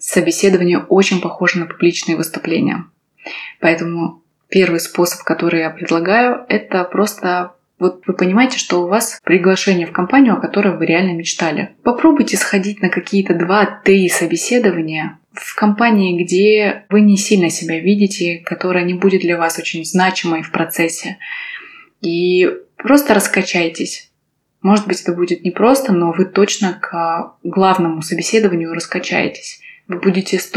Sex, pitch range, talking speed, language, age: female, 170-205 Hz, 130 wpm, Russian, 20-39